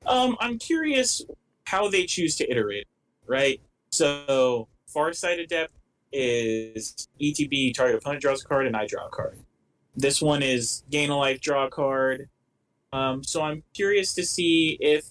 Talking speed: 160 wpm